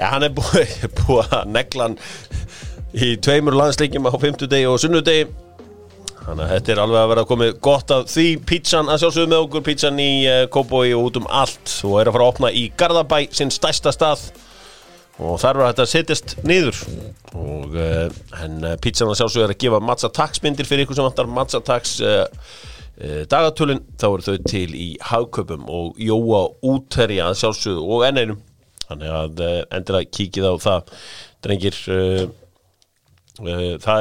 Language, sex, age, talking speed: English, male, 30-49, 140 wpm